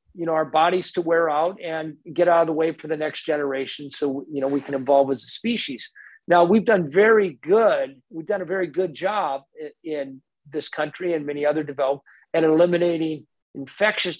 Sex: male